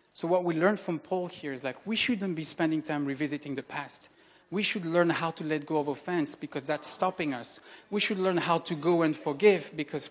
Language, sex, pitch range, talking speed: English, male, 150-190 Hz, 230 wpm